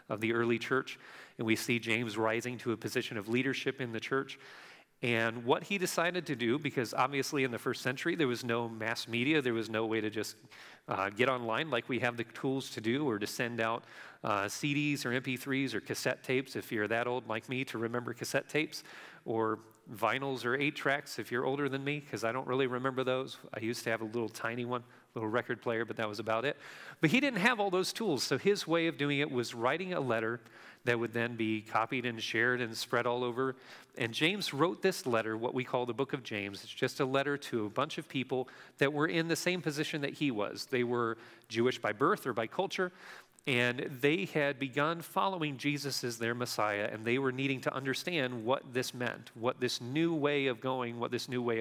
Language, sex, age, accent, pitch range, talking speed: English, male, 40-59, American, 115-140 Hz, 230 wpm